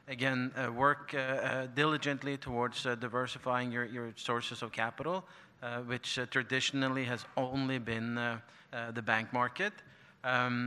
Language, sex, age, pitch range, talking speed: English, male, 30-49, 120-130 Hz, 150 wpm